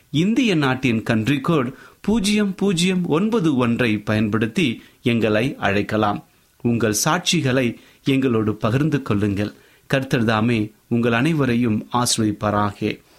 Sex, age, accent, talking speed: male, 30-49, native, 85 wpm